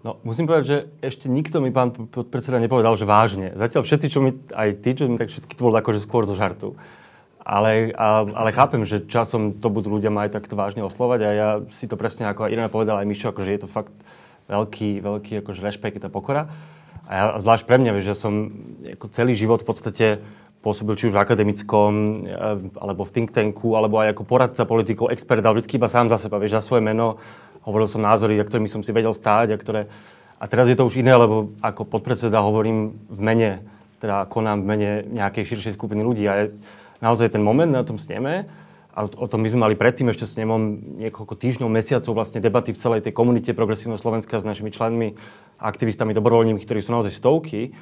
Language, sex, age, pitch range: Slovak, male, 30-49, 105-120 Hz